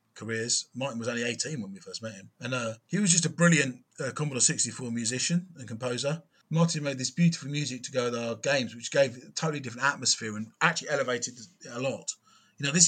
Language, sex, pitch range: English, male, 120-160 Hz